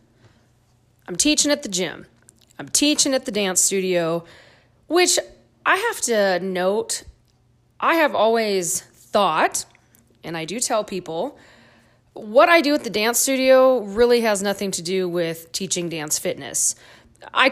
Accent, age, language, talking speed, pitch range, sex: American, 20-39, English, 145 wpm, 170-240 Hz, female